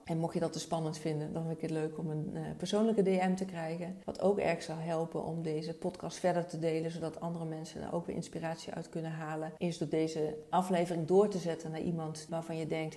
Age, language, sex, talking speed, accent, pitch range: 40-59, Dutch, female, 235 wpm, Dutch, 165-190 Hz